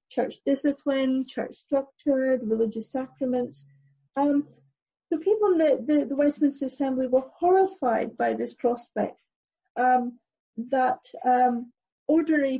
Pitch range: 240-290 Hz